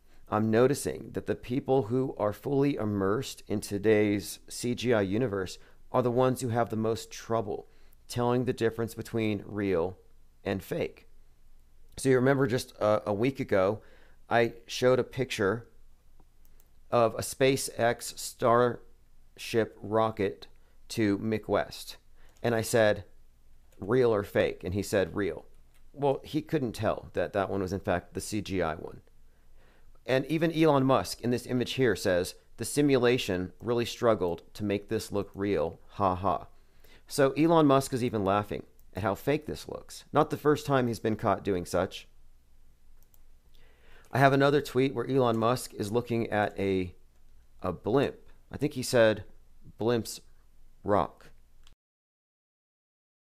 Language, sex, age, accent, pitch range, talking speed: English, male, 40-59, American, 85-125 Hz, 145 wpm